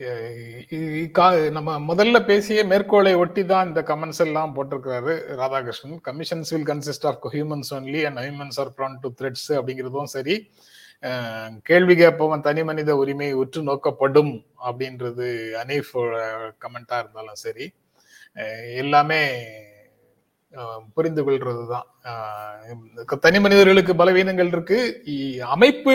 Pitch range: 135-190 Hz